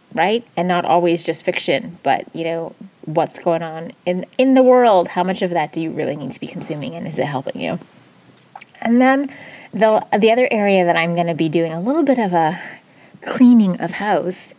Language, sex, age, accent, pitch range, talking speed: English, female, 20-39, American, 170-210 Hz, 215 wpm